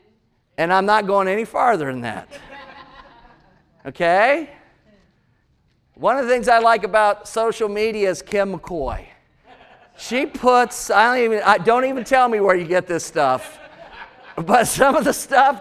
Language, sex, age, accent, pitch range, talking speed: English, male, 40-59, American, 185-245 Hz, 160 wpm